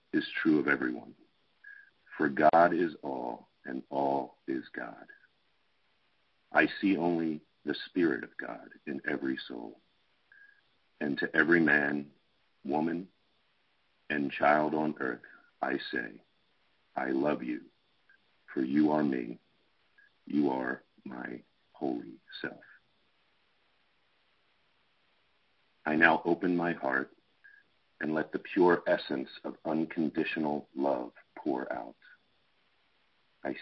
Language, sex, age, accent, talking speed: English, male, 50-69, American, 110 wpm